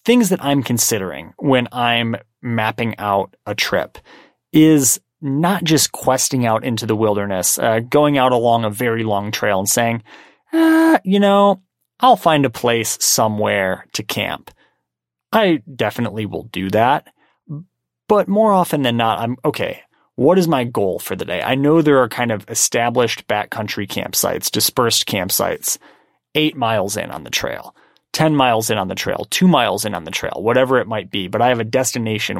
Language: English